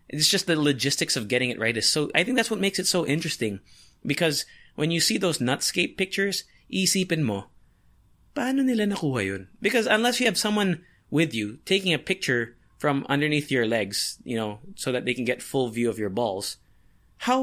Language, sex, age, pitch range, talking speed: English, male, 20-39, 115-180 Hz, 205 wpm